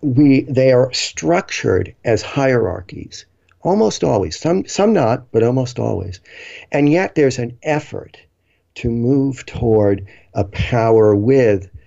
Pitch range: 95-115 Hz